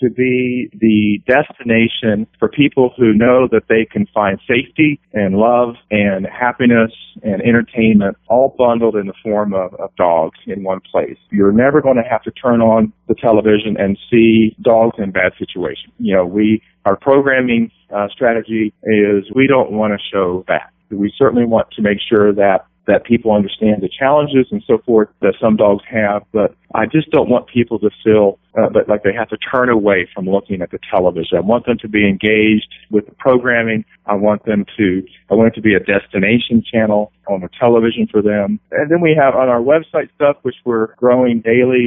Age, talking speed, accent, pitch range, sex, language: 40-59, 200 wpm, American, 105-125 Hz, male, English